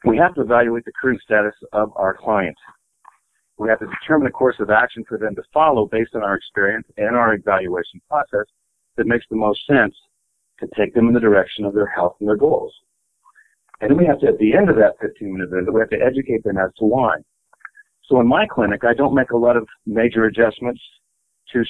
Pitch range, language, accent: 105-135 Hz, English, American